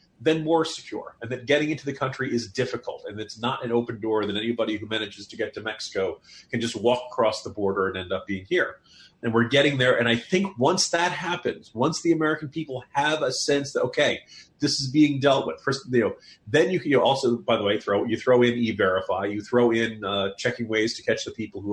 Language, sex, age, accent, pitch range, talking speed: English, male, 30-49, American, 115-145 Hz, 245 wpm